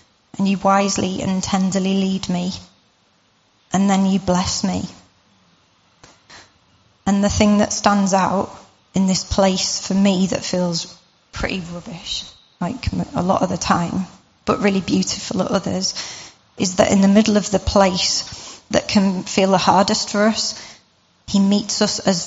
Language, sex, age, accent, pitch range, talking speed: English, female, 30-49, British, 185-200 Hz, 155 wpm